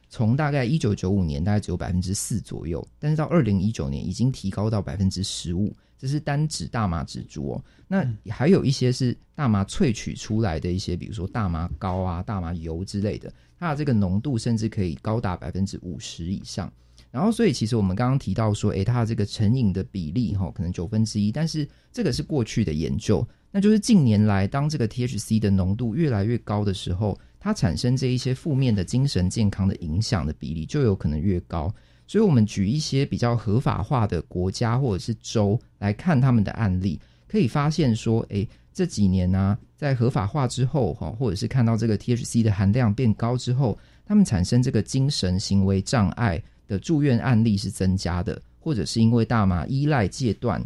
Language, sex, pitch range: Chinese, male, 95-125 Hz